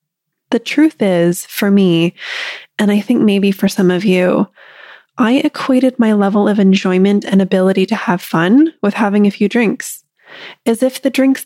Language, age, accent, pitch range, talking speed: English, 20-39, American, 190-250 Hz, 175 wpm